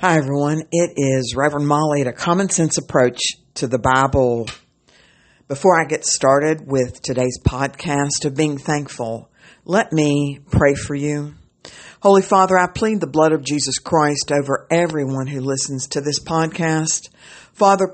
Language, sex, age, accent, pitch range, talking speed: English, female, 60-79, American, 130-175 Hz, 155 wpm